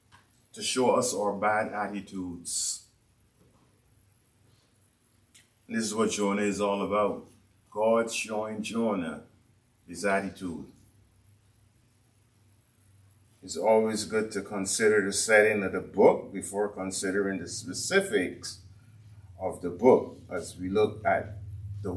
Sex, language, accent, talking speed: male, English, American, 110 wpm